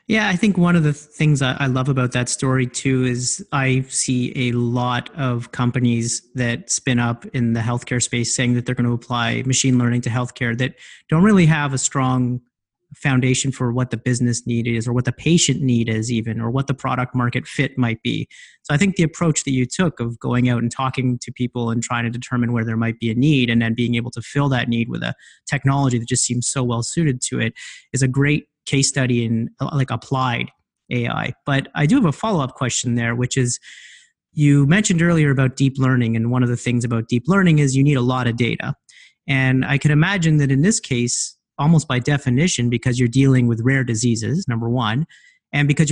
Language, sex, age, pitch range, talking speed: English, male, 30-49, 120-140 Hz, 225 wpm